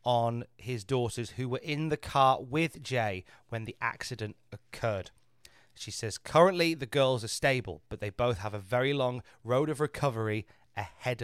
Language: English